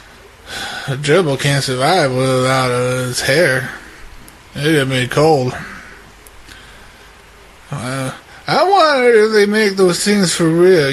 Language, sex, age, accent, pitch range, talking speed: English, male, 20-39, American, 130-170 Hz, 115 wpm